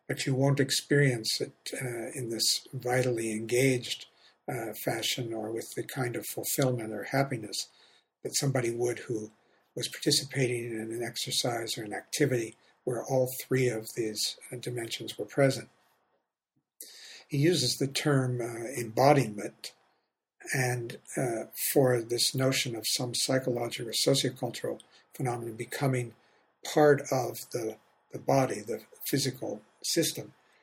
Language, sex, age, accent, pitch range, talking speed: English, male, 60-79, American, 115-135 Hz, 125 wpm